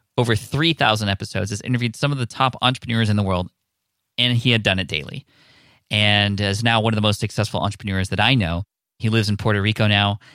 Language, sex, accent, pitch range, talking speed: English, male, American, 105-135 Hz, 215 wpm